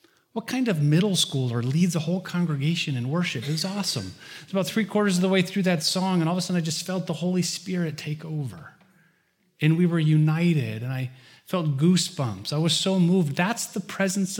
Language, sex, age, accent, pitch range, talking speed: English, male, 30-49, American, 115-165 Hz, 220 wpm